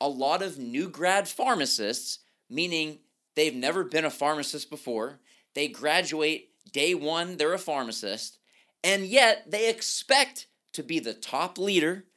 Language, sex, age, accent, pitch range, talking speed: English, male, 30-49, American, 155-230 Hz, 145 wpm